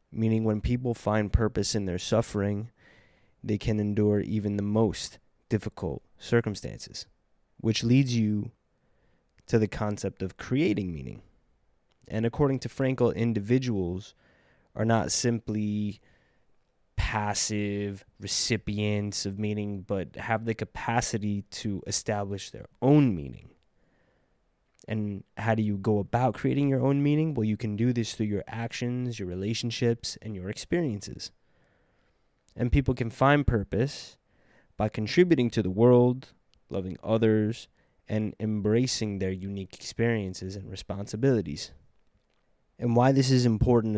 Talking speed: 125 wpm